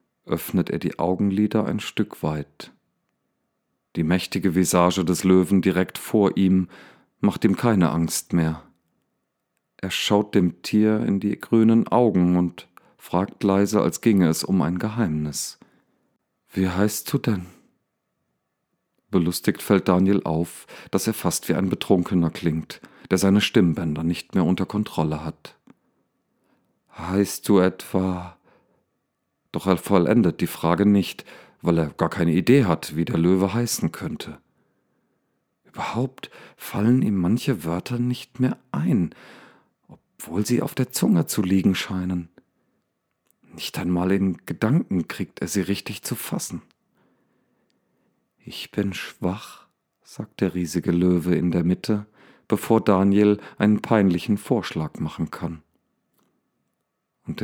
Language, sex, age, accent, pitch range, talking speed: German, male, 40-59, German, 85-105 Hz, 130 wpm